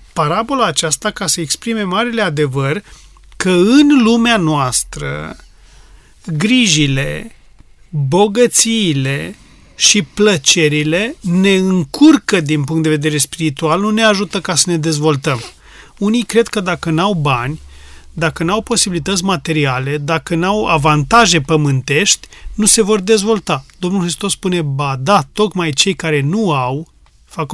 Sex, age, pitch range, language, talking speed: male, 30-49, 155-210 Hz, Romanian, 125 wpm